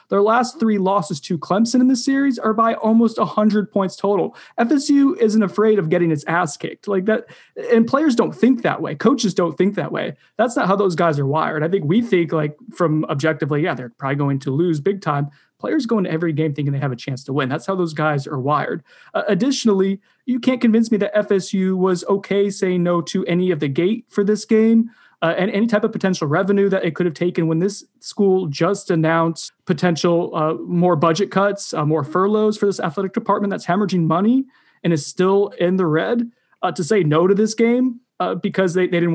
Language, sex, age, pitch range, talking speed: English, male, 20-39, 165-220 Hz, 225 wpm